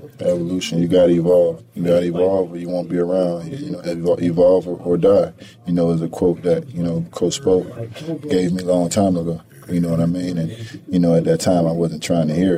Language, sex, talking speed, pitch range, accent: English, male, 250 wpm, 85-95 Hz, American